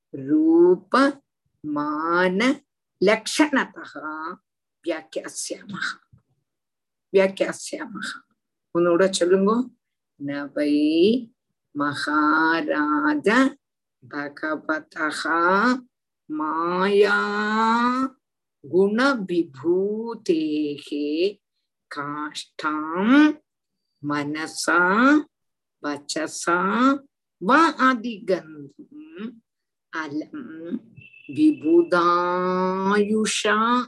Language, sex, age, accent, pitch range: Tamil, female, 50-69, native, 165-265 Hz